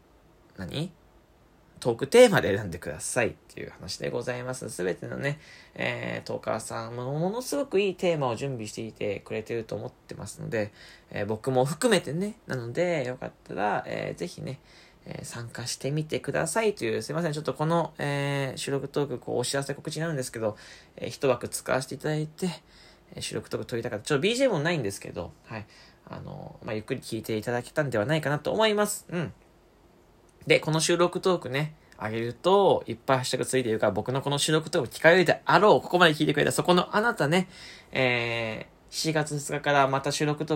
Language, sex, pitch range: Japanese, male, 115-160 Hz